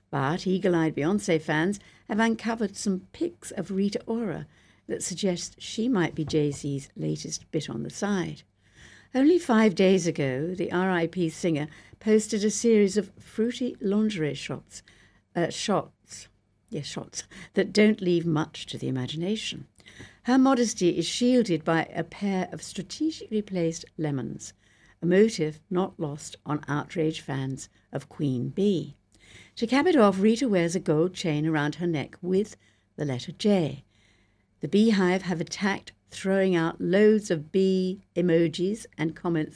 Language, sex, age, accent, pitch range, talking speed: English, female, 60-79, British, 150-205 Hz, 140 wpm